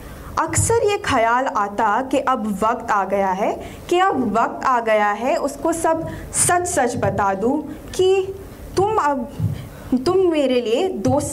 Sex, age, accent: female, 20-39, native